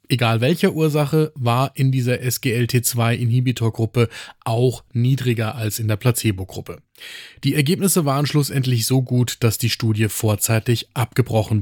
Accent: German